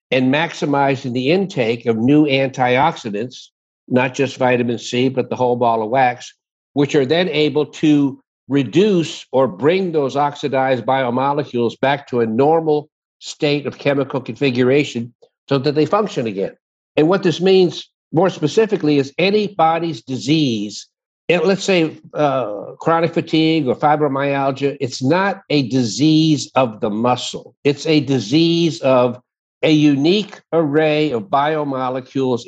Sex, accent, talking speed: male, American, 135 wpm